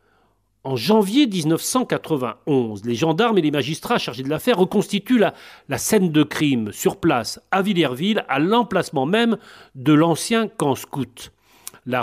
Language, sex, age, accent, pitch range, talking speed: French, male, 40-59, French, 140-200 Hz, 145 wpm